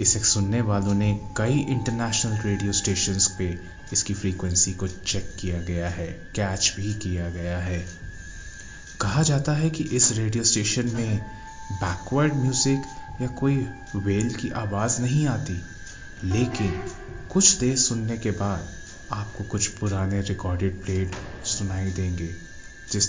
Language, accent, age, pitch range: Hindi, native, 30-49, 95-105 Hz